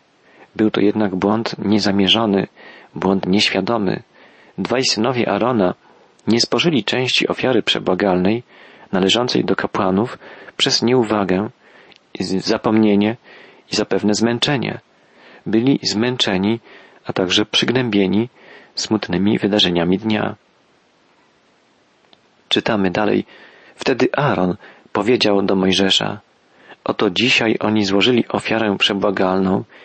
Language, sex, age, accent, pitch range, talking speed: Polish, male, 40-59, native, 95-115 Hz, 90 wpm